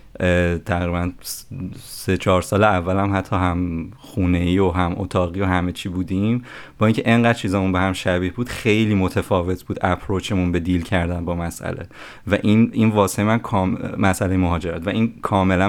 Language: Persian